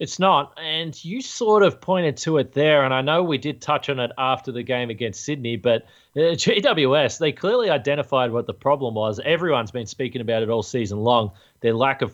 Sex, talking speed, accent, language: male, 215 wpm, Australian, English